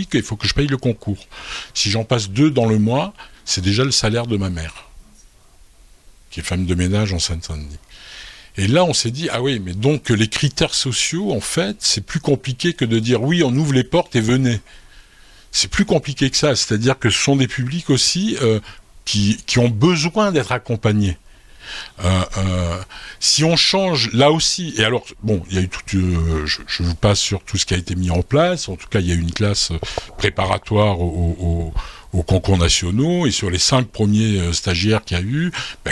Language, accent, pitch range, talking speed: French, French, 95-135 Hz, 215 wpm